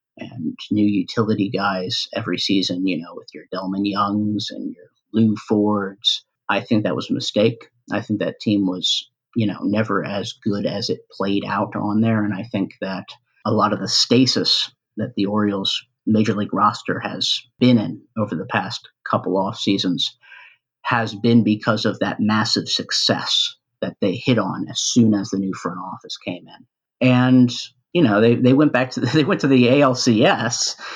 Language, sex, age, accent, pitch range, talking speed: English, male, 50-69, American, 105-125 Hz, 185 wpm